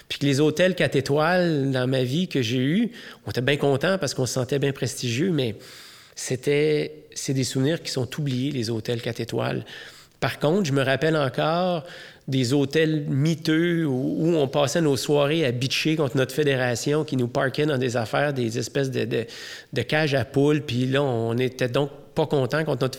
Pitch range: 135-170 Hz